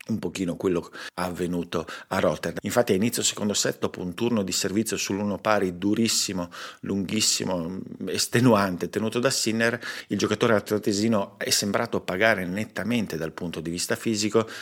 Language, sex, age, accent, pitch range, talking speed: Italian, male, 50-69, native, 90-110 Hz, 150 wpm